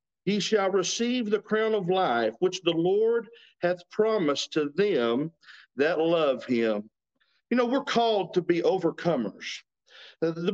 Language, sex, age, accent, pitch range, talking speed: English, male, 50-69, American, 170-225 Hz, 140 wpm